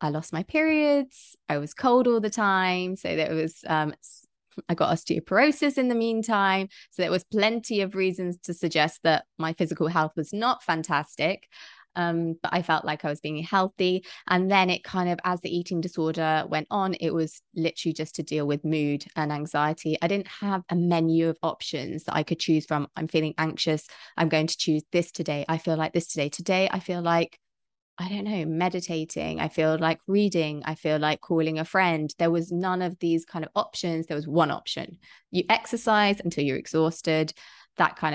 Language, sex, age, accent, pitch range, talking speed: English, female, 20-39, British, 160-190 Hz, 200 wpm